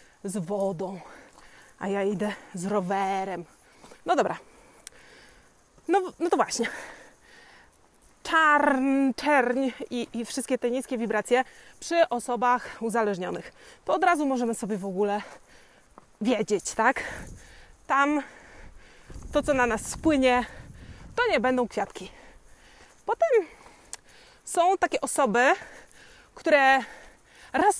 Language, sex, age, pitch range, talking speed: Polish, female, 20-39, 240-320 Hz, 105 wpm